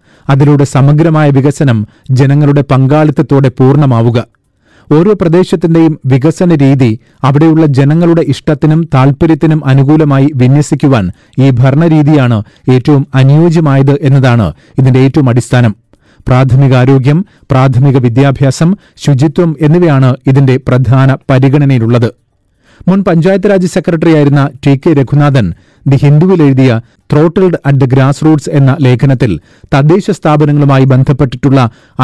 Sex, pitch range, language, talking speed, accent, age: male, 130-155 Hz, Malayalam, 95 wpm, native, 30-49